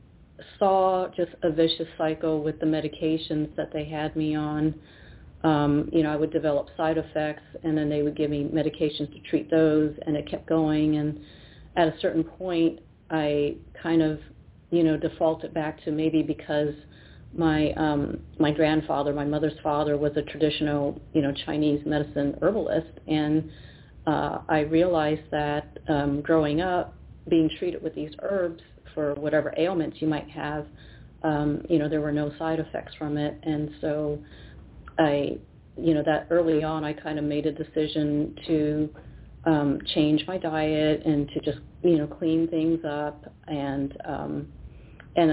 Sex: female